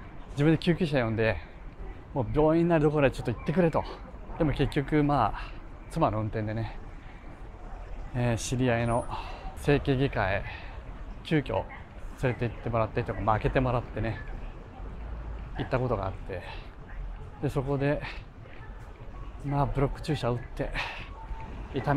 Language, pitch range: Japanese, 90-140 Hz